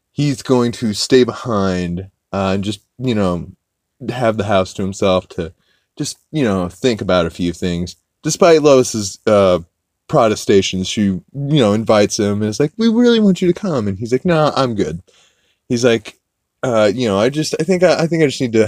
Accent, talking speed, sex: American, 205 wpm, male